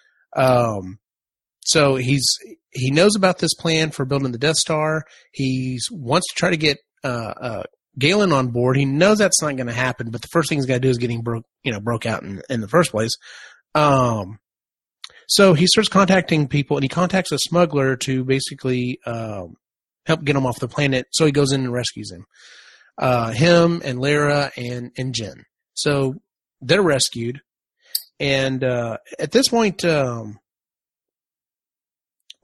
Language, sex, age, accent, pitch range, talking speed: English, male, 30-49, American, 125-155 Hz, 175 wpm